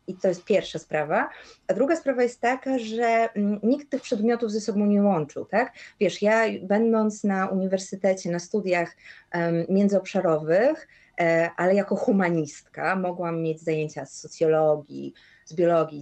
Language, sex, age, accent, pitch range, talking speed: Polish, female, 30-49, native, 175-225 Hz, 145 wpm